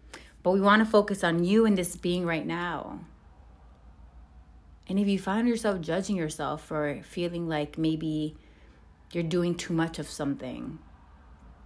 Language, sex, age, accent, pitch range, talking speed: English, female, 30-49, American, 150-190 Hz, 145 wpm